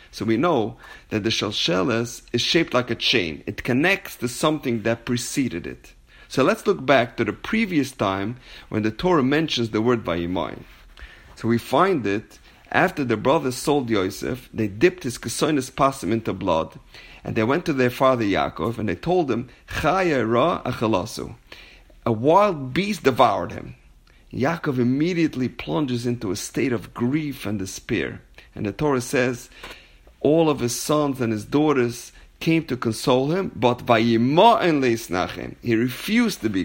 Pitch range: 115-150 Hz